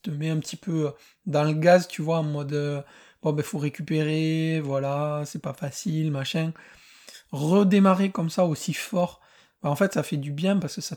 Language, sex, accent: French, male, French